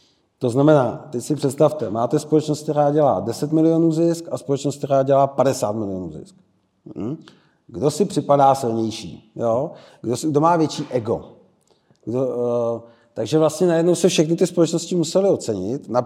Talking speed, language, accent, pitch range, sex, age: 140 wpm, Czech, native, 135-165 Hz, male, 40-59